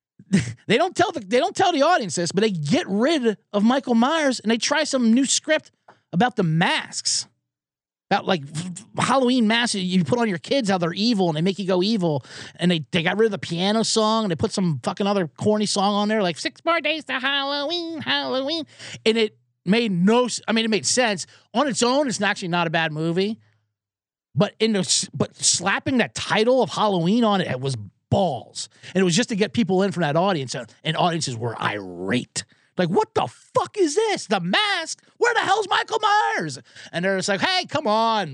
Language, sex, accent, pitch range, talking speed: English, male, American, 165-245 Hz, 215 wpm